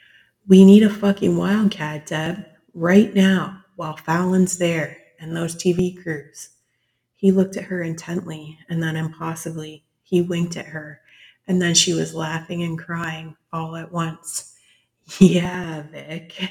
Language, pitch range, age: English, 155-180 Hz, 30-49